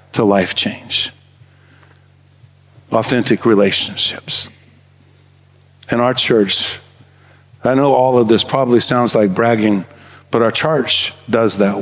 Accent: American